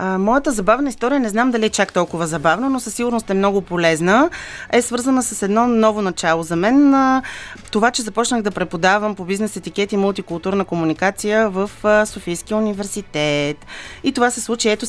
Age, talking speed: 30-49, 175 wpm